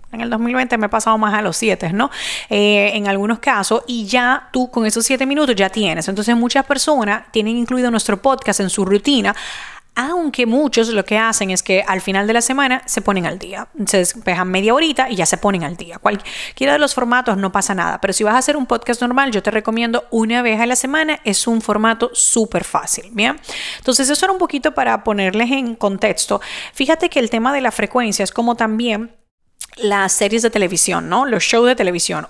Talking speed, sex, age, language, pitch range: 215 wpm, female, 30-49, Spanish, 195-245 Hz